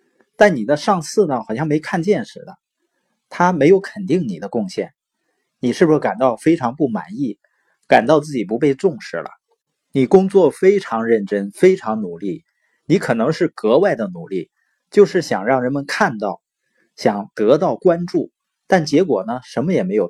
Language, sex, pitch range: Chinese, male, 130-195 Hz